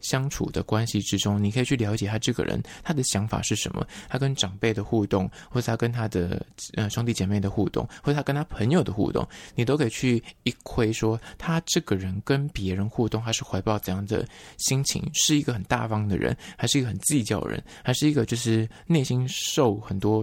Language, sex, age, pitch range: Chinese, male, 20-39, 100-125 Hz